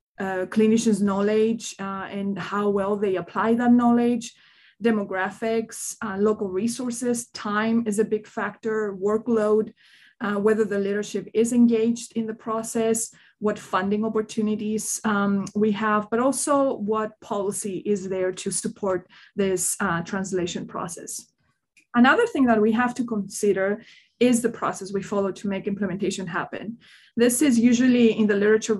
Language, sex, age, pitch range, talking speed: English, female, 20-39, 200-230 Hz, 145 wpm